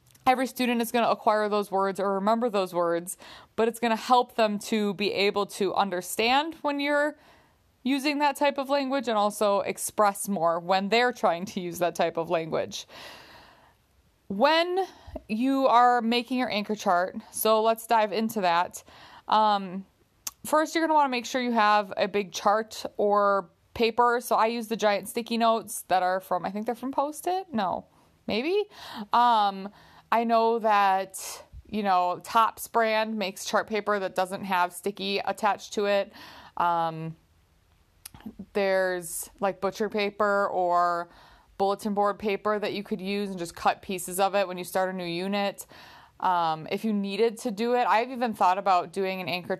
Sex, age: female, 20-39